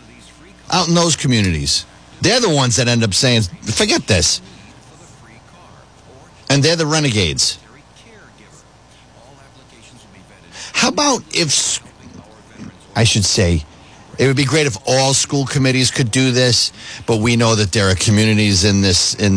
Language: English